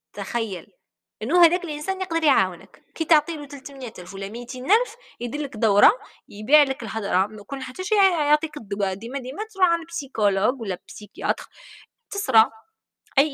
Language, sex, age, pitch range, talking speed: Arabic, female, 20-39, 215-300 Hz, 130 wpm